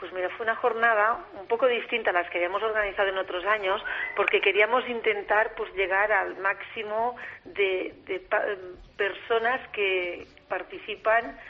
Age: 40-59